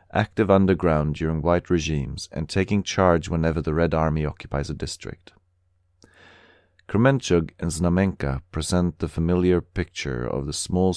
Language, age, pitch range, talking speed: English, 40-59, 75-95 Hz, 135 wpm